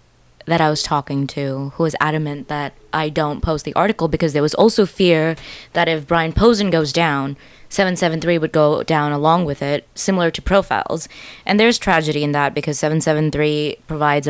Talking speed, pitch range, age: 180 wpm, 145-170 Hz, 20-39